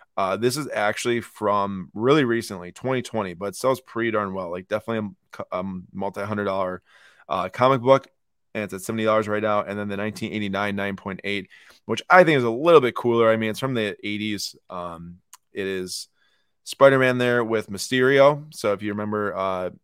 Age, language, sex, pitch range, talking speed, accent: 20-39, English, male, 100-125 Hz, 180 wpm, American